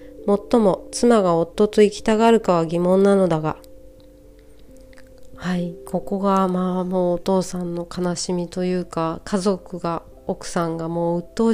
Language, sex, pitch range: Japanese, female, 165-210 Hz